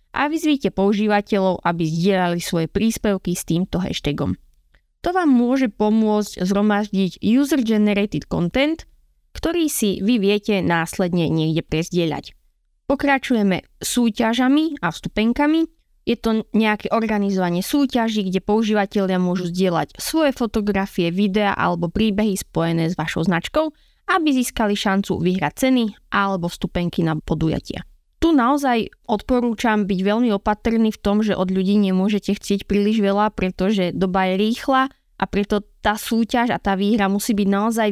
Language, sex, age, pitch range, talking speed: Slovak, female, 20-39, 185-240 Hz, 135 wpm